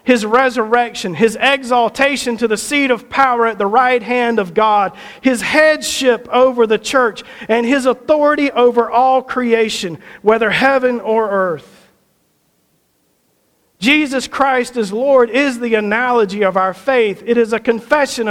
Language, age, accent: English, 50-69, American